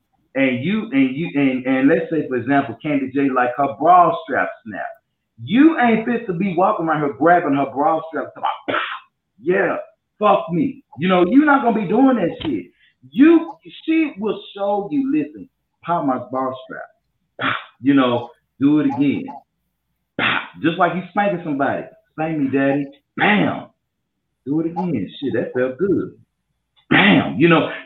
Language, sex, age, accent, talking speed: English, male, 40-59, American, 165 wpm